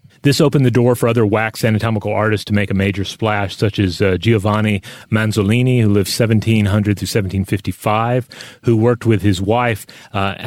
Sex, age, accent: male, 30-49, American